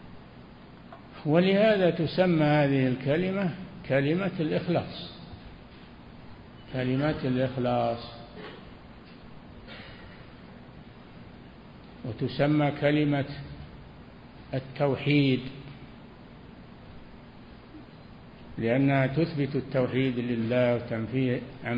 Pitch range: 125-155 Hz